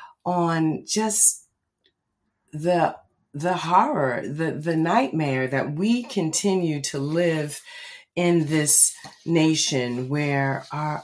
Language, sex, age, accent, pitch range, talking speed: English, female, 40-59, American, 145-180 Hz, 100 wpm